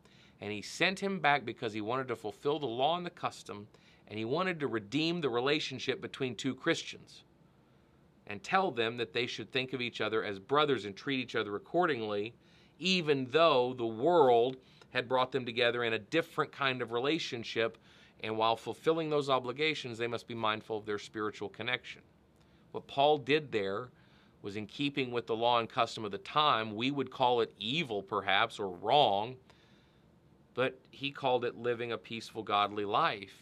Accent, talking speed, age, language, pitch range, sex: American, 180 wpm, 40-59, English, 110-145 Hz, male